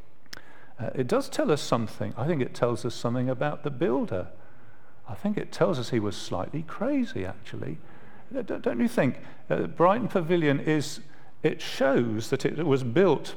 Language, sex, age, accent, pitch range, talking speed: English, male, 50-69, British, 120-170 Hz, 175 wpm